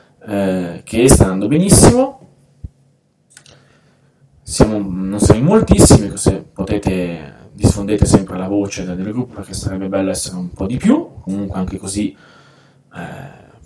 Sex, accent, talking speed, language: male, Italian, 130 wpm, English